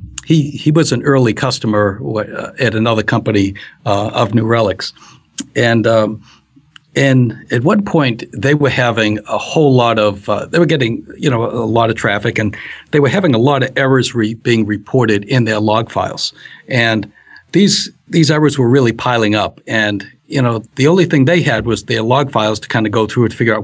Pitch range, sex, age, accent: 105-135 Hz, male, 60-79, American